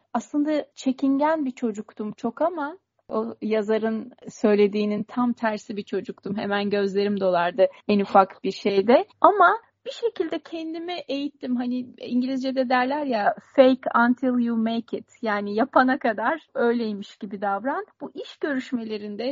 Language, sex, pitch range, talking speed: Turkish, female, 210-280 Hz, 135 wpm